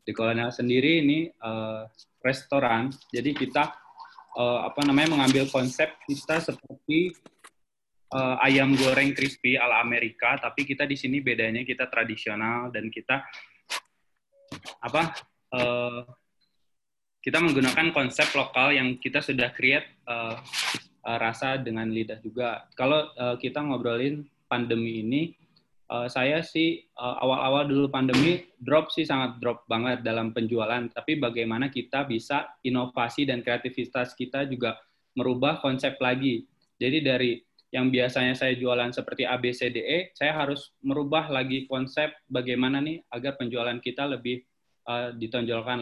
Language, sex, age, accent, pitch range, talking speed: Indonesian, male, 20-39, native, 120-145 Hz, 130 wpm